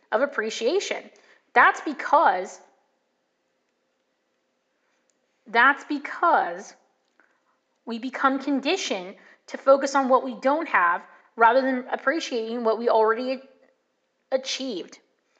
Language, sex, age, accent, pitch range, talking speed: English, female, 30-49, American, 225-280 Hz, 90 wpm